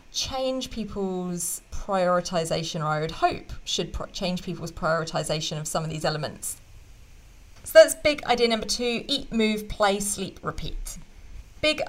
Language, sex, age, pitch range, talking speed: English, female, 30-49, 175-225 Hz, 140 wpm